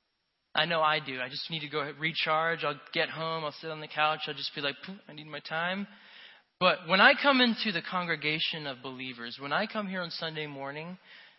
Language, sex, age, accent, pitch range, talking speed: English, male, 20-39, American, 155-210 Hz, 225 wpm